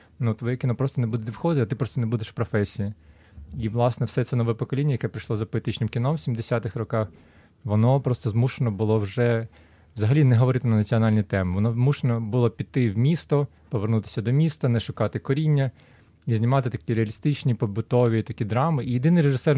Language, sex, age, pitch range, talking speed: Ukrainian, male, 20-39, 110-130 Hz, 185 wpm